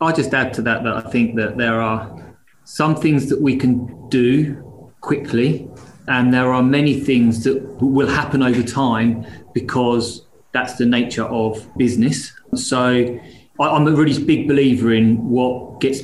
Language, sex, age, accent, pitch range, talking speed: English, male, 30-49, British, 115-135 Hz, 160 wpm